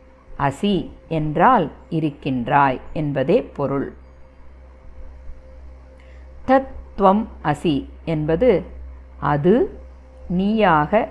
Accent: native